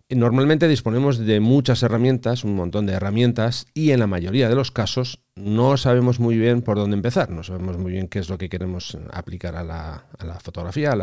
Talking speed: 210 wpm